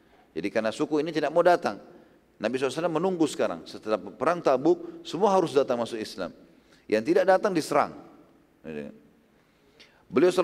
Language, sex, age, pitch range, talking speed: Indonesian, male, 40-59, 120-150 Hz, 145 wpm